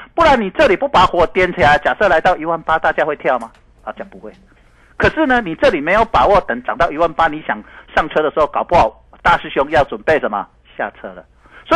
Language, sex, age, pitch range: Chinese, male, 50-69, 160-265 Hz